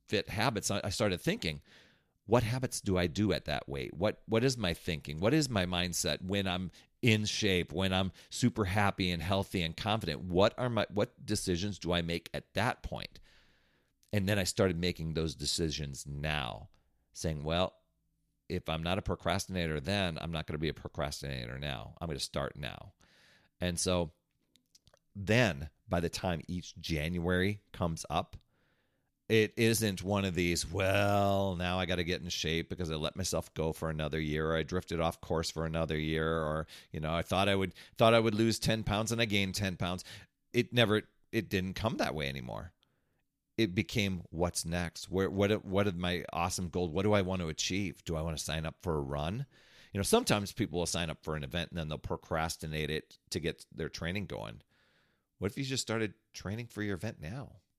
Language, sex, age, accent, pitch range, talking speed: English, male, 40-59, American, 80-105 Hz, 195 wpm